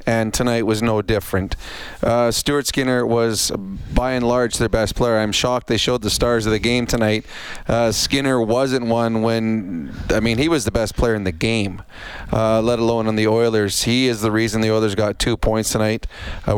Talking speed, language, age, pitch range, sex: 205 wpm, English, 30-49, 110-125 Hz, male